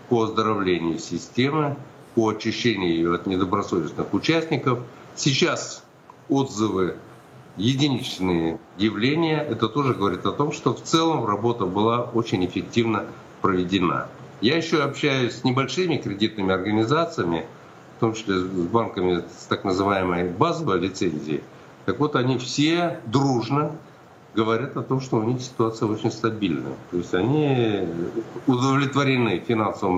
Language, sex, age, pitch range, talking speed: Russian, male, 60-79, 105-140 Hz, 125 wpm